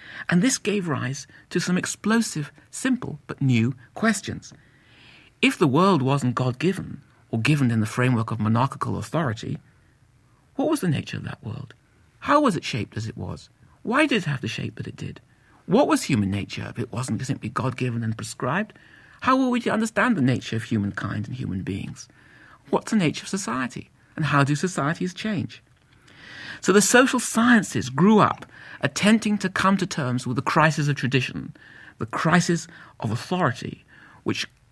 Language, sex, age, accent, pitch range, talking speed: English, male, 60-79, British, 120-180 Hz, 175 wpm